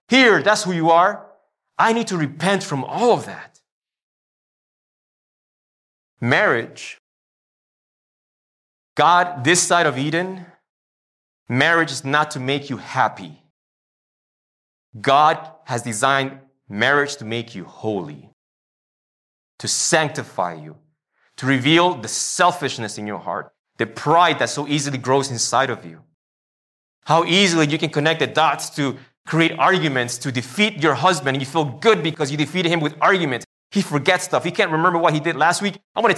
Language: English